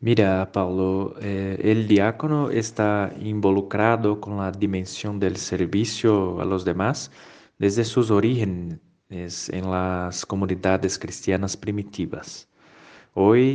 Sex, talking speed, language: male, 105 wpm, Spanish